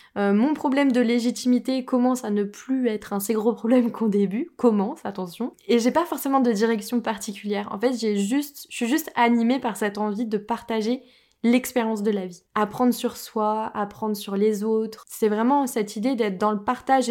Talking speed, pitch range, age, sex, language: 195 wpm, 205-240 Hz, 20-39, female, French